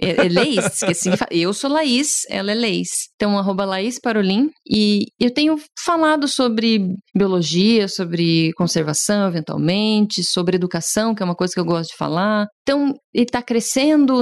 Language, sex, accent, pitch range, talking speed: Portuguese, female, Brazilian, 180-255 Hz, 160 wpm